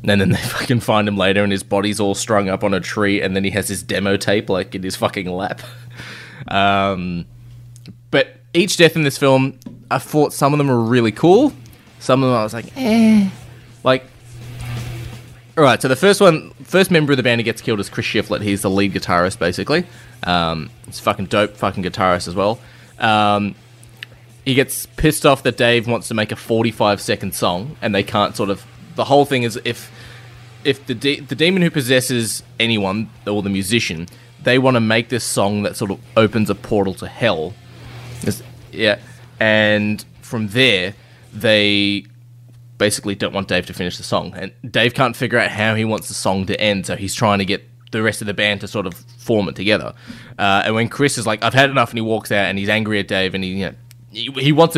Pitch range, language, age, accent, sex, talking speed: 100-125 Hz, English, 20-39, Australian, male, 215 wpm